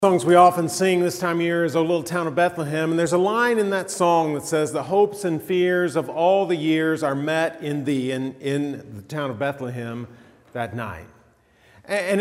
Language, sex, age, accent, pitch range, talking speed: English, male, 40-59, American, 155-185 Hz, 215 wpm